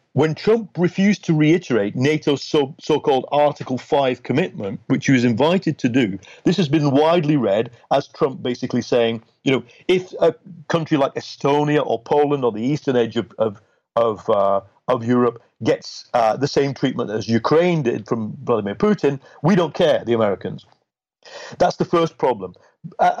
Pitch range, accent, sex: 125-170 Hz, British, male